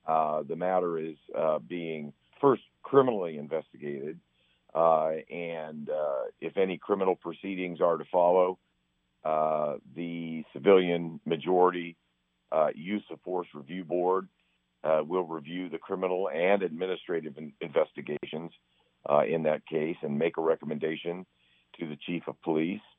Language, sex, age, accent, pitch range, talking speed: English, male, 50-69, American, 75-90 Hz, 130 wpm